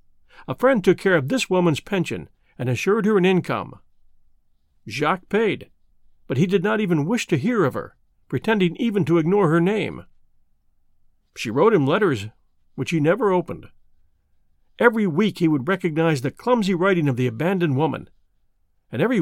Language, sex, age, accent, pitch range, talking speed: English, male, 50-69, American, 120-195 Hz, 165 wpm